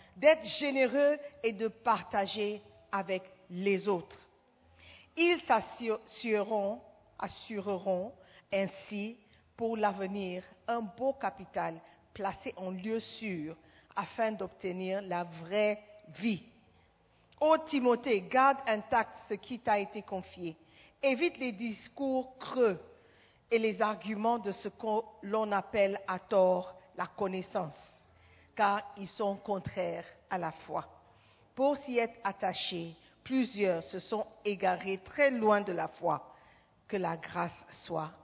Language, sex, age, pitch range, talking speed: French, female, 50-69, 195-285 Hz, 115 wpm